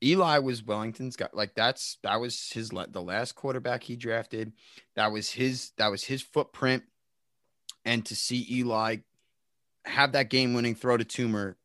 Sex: male